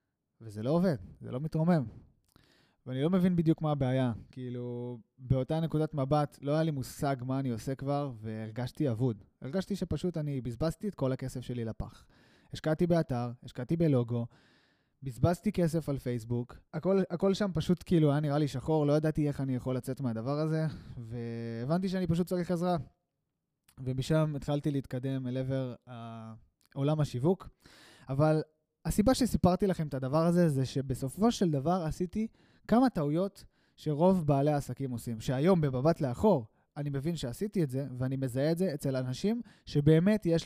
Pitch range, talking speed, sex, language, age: 130-170 Hz, 155 wpm, male, Hebrew, 20-39